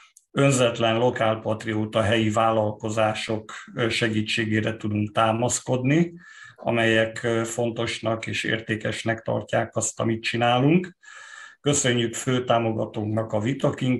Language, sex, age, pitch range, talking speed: Hungarian, male, 50-69, 110-125 Hz, 80 wpm